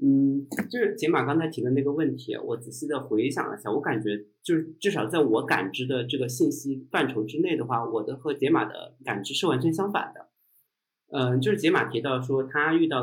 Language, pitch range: Chinese, 125-170 Hz